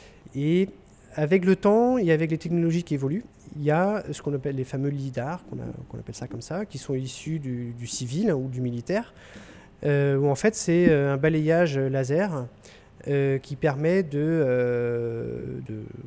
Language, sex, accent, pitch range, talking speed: French, male, French, 130-170 Hz, 180 wpm